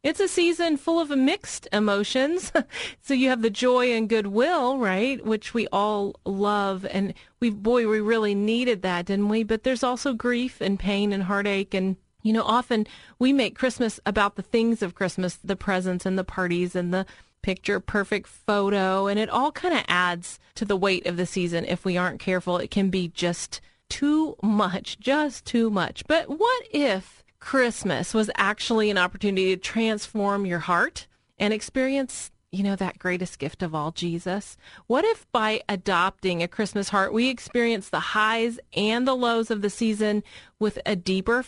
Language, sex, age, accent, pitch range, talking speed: English, female, 30-49, American, 190-250 Hz, 180 wpm